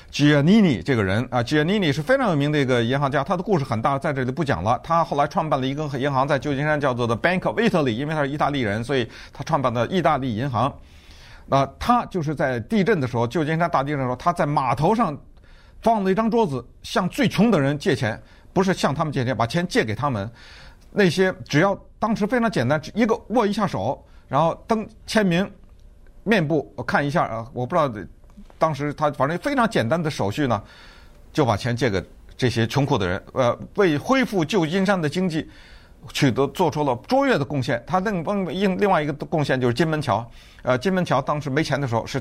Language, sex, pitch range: Chinese, male, 120-175 Hz